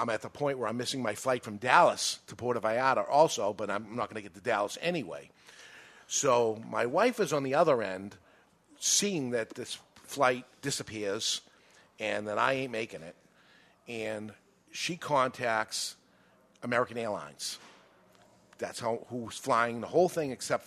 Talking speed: 160 wpm